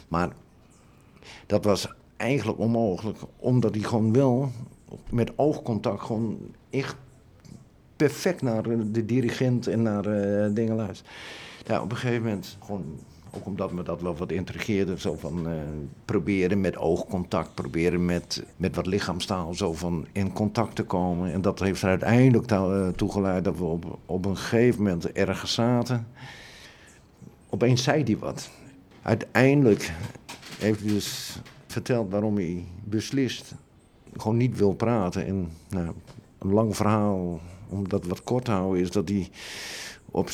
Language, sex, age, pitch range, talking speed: Dutch, male, 50-69, 90-115 Hz, 145 wpm